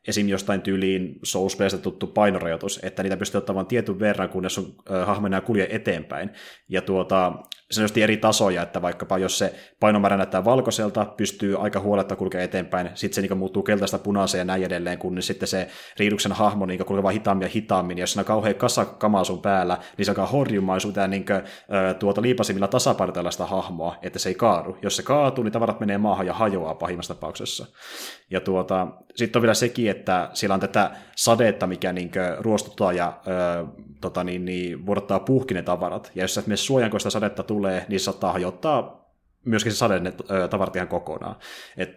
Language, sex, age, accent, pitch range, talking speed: Finnish, male, 30-49, native, 95-110 Hz, 180 wpm